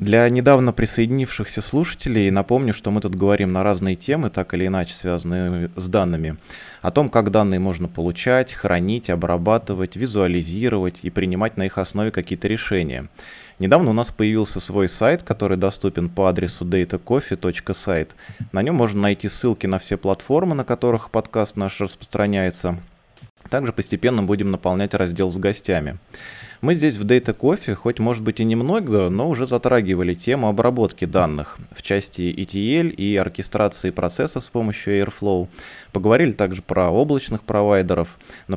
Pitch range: 95-115 Hz